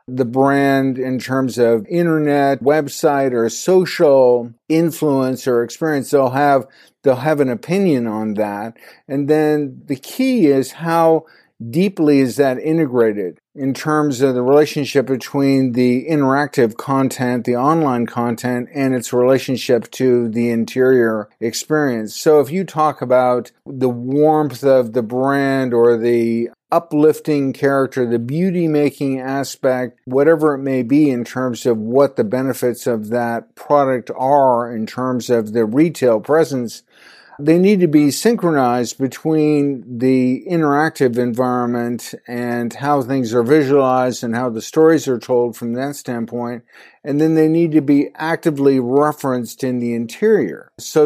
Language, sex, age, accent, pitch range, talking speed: English, male, 50-69, American, 125-150 Hz, 140 wpm